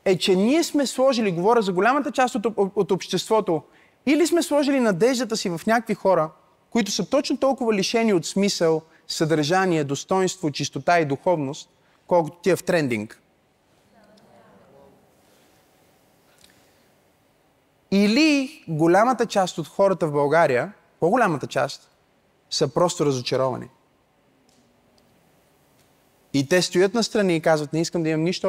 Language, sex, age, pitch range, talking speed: Bulgarian, male, 30-49, 145-200 Hz, 125 wpm